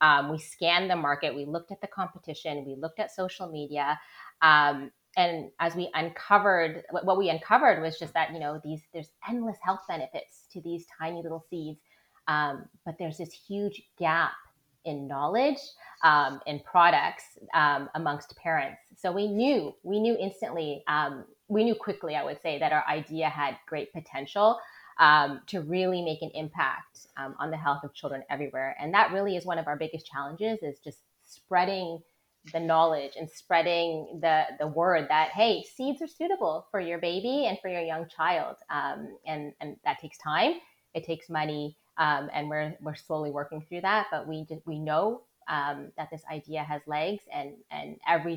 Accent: American